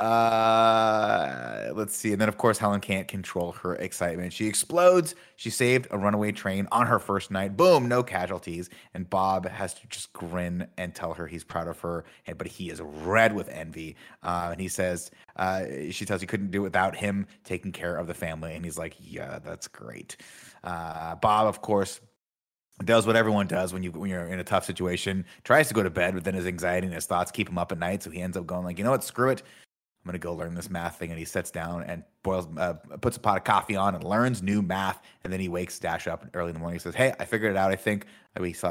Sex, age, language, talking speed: male, 30-49, English, 245 wpm